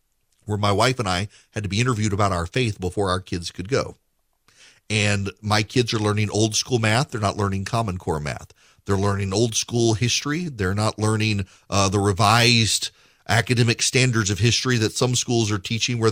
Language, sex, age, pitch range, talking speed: English, male, 40-59, 100-120 Hz, 195 wpm